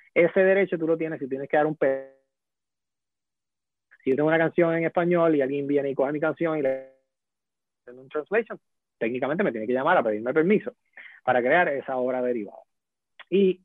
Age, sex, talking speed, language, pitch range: 30-49, male, 190 wpm, English, 130-175 Hz